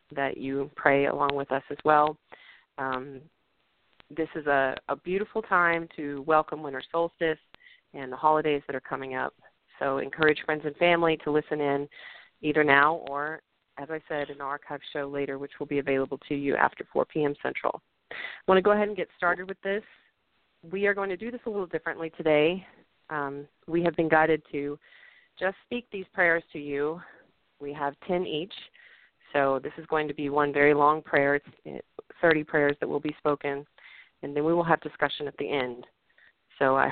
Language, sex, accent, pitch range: English, female, American, 145-165 Hz